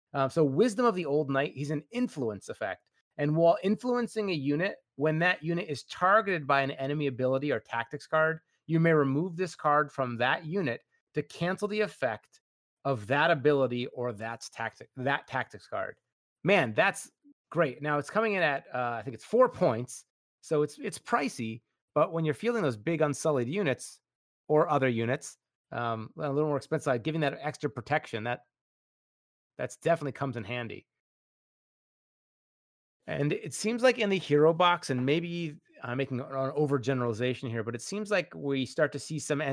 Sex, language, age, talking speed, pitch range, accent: male, English, 30-49, 180 wpm, 130-165 Hz, American